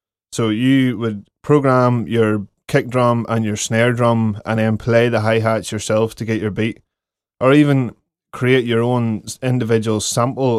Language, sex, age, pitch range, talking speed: English, male, 20-39, 110-120 Hz, 160 wpm